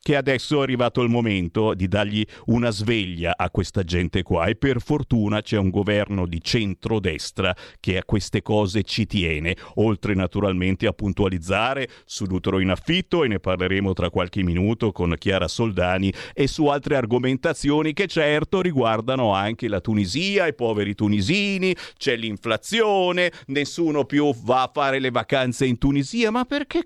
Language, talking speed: Italian, 160 wpm